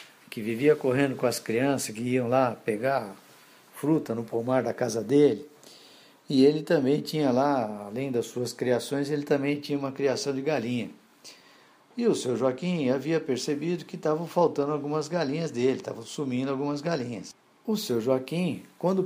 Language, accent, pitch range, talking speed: Portuguese, Brazilian, 120-160 Hz, 165 wpm